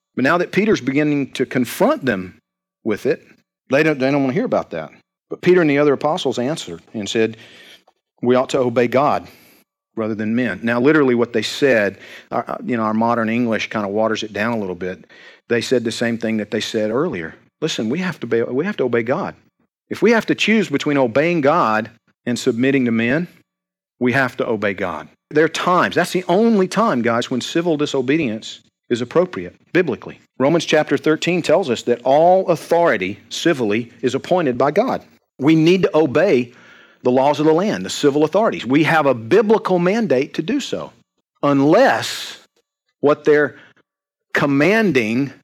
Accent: American